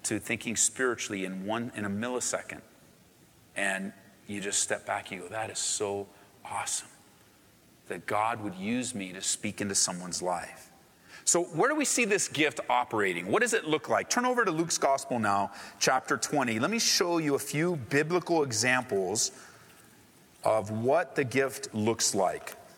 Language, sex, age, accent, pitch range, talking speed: English, male, 40-59, American, 115-195 Hz, 165 wpm